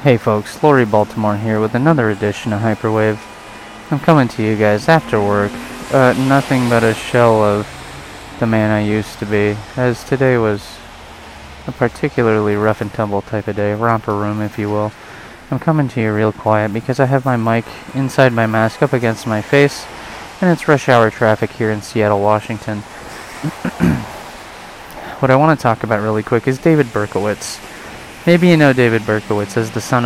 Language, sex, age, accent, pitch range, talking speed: English, male, 20-39, American, 105-130 Hz, 180 wpm